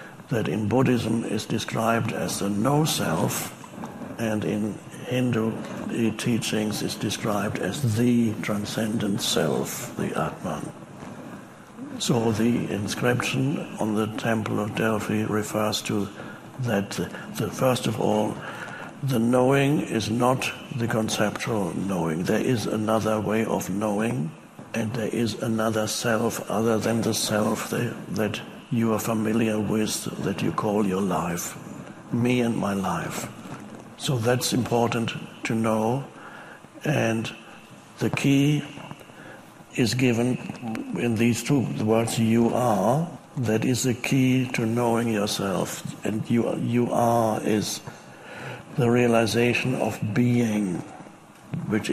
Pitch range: 110-125 Hz